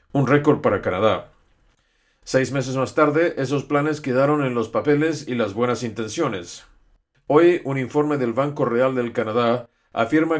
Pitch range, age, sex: 115-145 Hz, 50-69, male